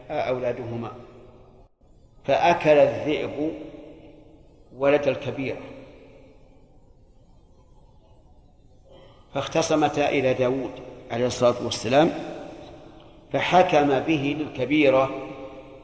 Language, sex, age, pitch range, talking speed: Arabic, male, 50-69, 125-150 Hz, 55 wpm